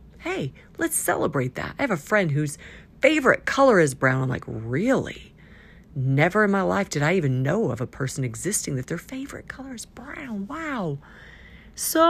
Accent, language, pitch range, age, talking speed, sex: American, English, 140-200 Hz, 50-69, 180 wpm, female